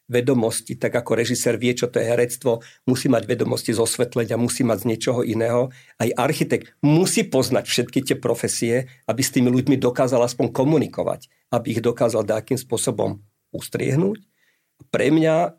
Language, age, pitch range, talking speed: Slovak, 50-69, 115-140 Hz, 160 wpm